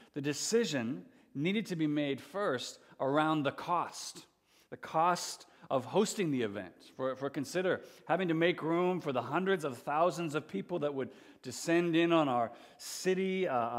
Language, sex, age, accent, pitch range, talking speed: English, male, 40-59, American, 130-170 Hz, 165 wpm